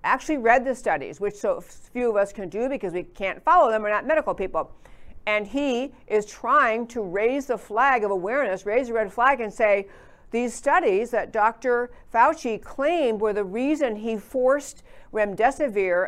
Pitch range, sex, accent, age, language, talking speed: 210-265 Hz, female, American, 50-69, English, 180 wpm